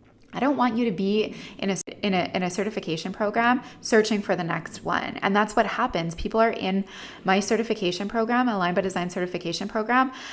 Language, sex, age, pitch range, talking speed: English, female, 20-39, 180-220 Hz, 200 wpm